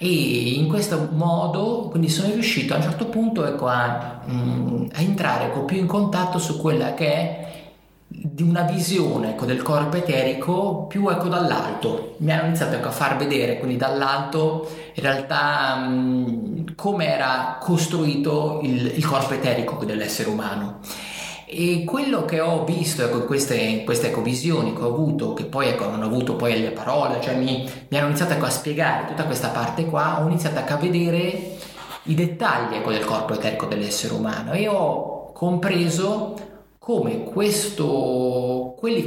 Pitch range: 125-175 Hz